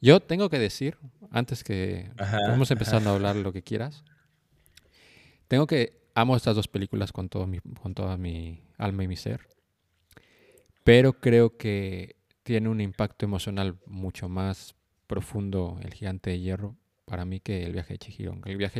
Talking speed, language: 170 wpm, Spanish